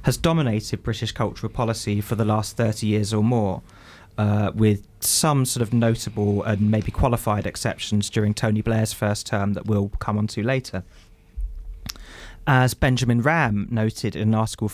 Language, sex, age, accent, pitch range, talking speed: English, male, 20-39, British, 105-120 Hz, 165 wpm